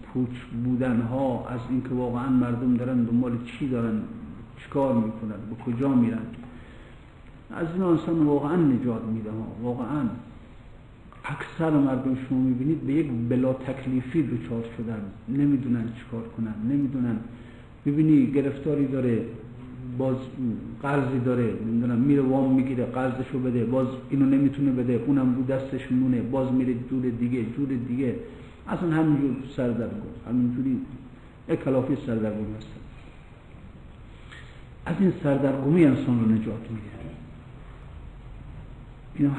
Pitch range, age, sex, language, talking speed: 120-145 Hz, 50-69, male, Persian, 120 wpm